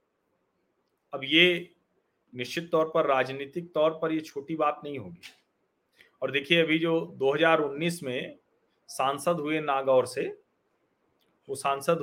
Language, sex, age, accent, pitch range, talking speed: Hindi, male, 40-59, native, 155-190 Hz, 125 wpm